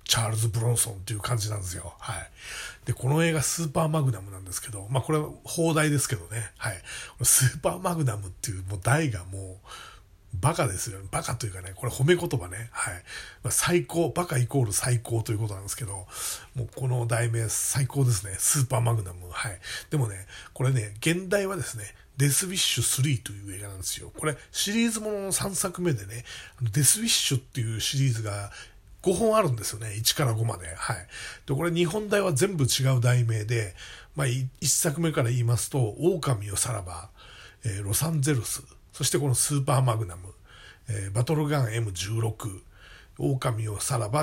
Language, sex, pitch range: Japanese, male, 105-145 Hz